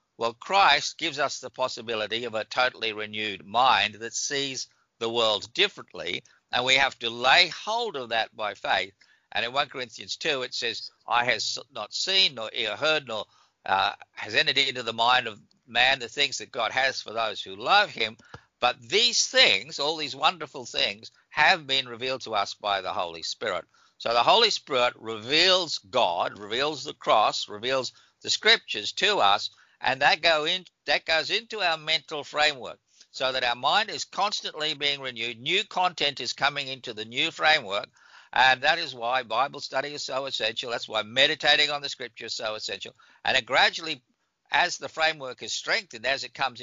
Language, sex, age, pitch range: English, male, 60-79, 115-155 Hz